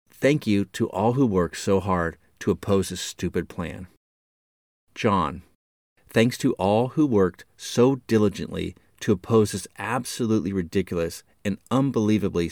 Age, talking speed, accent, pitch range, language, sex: 30-49, 135 wpm, American, 85-115 Hz, English, male